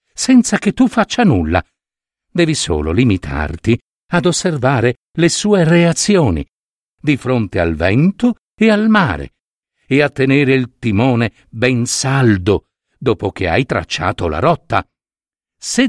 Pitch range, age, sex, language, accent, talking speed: 110-175 Hz, 60-79, male, Italian, native, 130 wpm